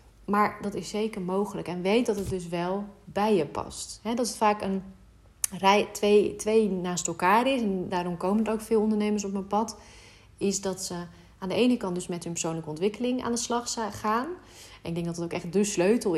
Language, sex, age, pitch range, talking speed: Dutch, female, 30-49, 175-215 Hz, 220 wpm